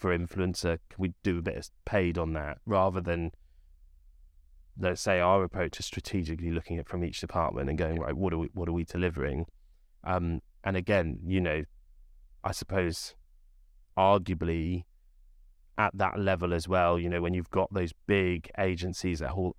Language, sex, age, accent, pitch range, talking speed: English, male, 20-39, British, 80-90 Hz, 170 wpm